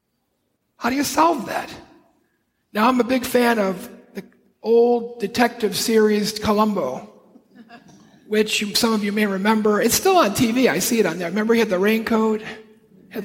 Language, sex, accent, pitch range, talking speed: English, male, American, 200-240 Hz, 170 wpm